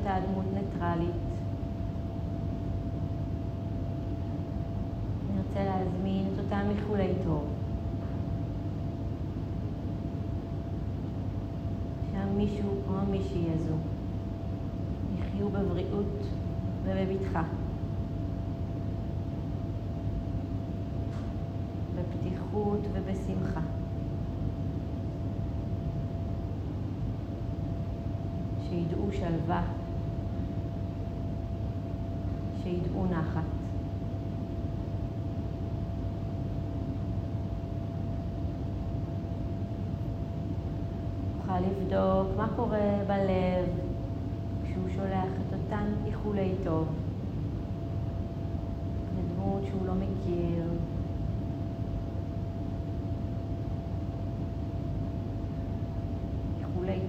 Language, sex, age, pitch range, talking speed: Hebrew, female, 30-49, 95-100 Hz, 40 wpm